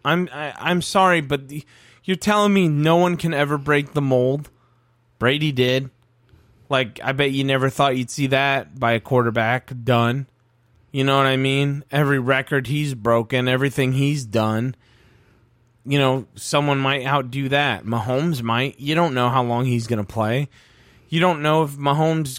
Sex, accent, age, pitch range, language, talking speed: male, American, 30-49, 120-150 Hz, English, 170 wpm